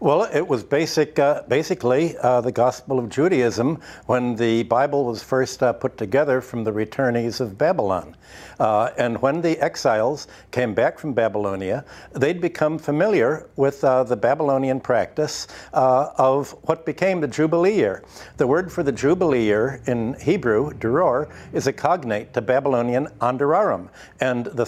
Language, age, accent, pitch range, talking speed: English, 60-79, American, 125-160 Hz, 155 wpm